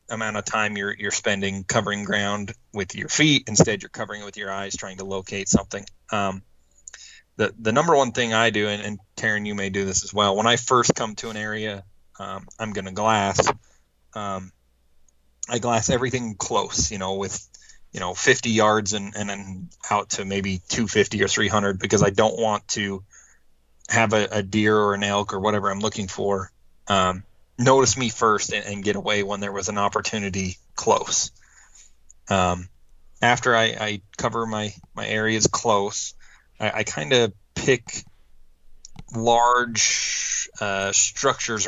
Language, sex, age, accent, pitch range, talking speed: English, male, 30-49, American, 95-110 Hz, 170 wpm